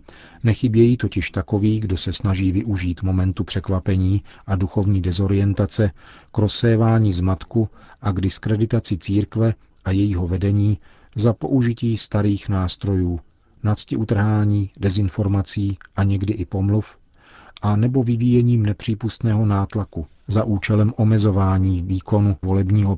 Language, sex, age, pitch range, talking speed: Czech, male, 40-59, 95-110 Hz, 115 wpm